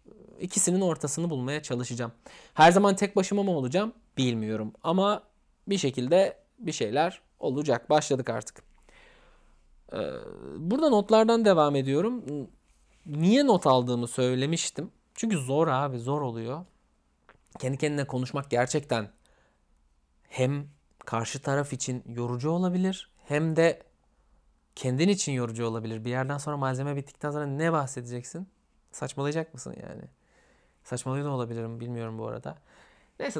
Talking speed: 120 wpm